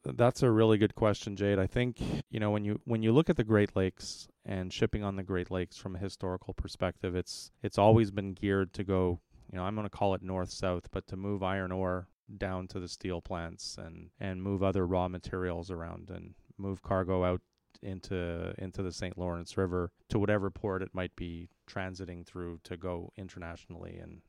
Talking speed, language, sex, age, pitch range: 210 wpm, English, male, 30-49, 90-100 Hz